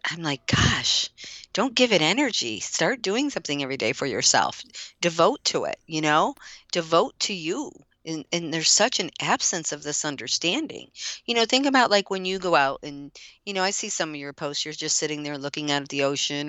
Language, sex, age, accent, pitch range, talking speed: English, female, 50-69, American, 140-180 Hz, 210 wpm